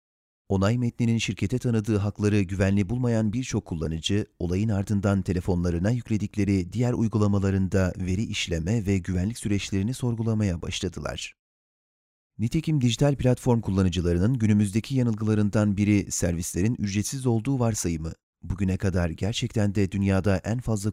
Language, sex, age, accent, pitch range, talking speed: Turkish, male, 40-59, native, 95-115 Hz, 115 wpm